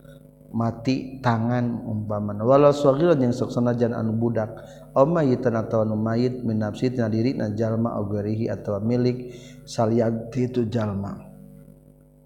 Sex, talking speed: male, 115 wpm